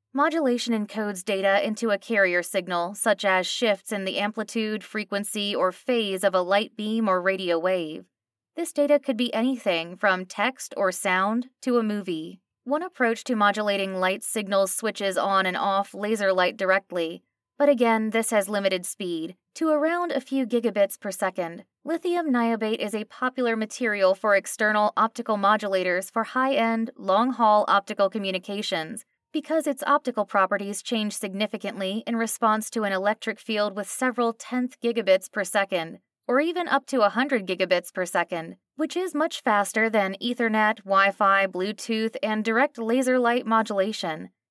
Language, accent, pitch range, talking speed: English, American, 190-240 Hz, 155 wpm